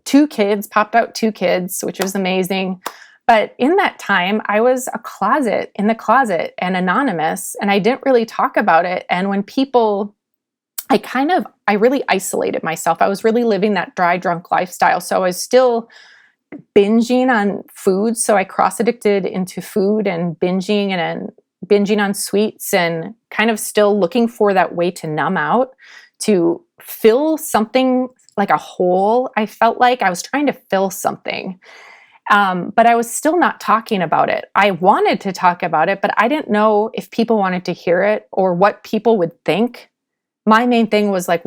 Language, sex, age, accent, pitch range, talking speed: English, female, 20-39, American, 190-240 Hz, 185 wpm